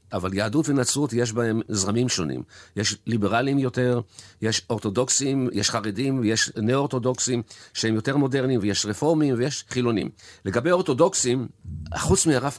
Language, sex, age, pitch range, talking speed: Hebrew, male, 50-69, 105-145 Hz, 130 wpm